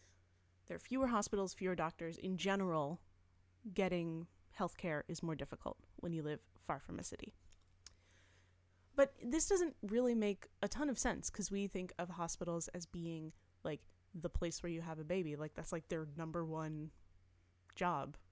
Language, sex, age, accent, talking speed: English, female, 10-29, American, 165 wpm